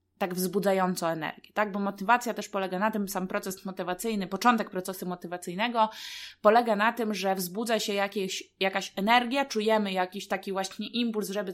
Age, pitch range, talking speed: 20-39, 180-215 Hz, 160 wpm